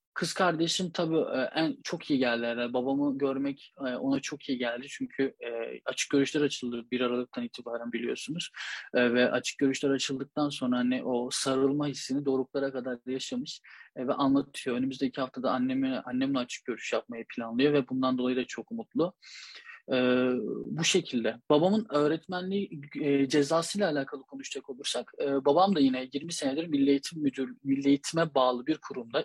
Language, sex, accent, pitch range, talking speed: Turkish, male, native, 125-150 Hz, 150 wpm